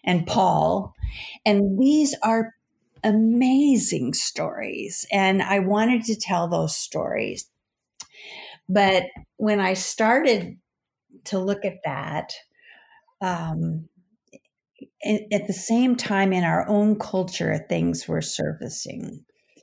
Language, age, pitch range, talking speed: English, 40-59, 170-210 Hz, 105 wpm